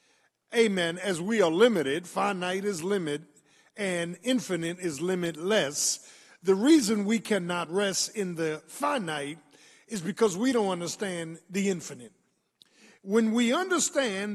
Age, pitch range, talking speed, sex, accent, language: 50-69, 170-225 Hz, 125 wpm, male, American, English